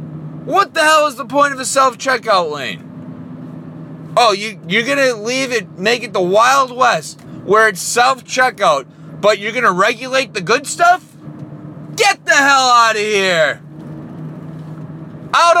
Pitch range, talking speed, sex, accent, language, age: 170-275 Hz, 145 wpm, male, American, English, 30-49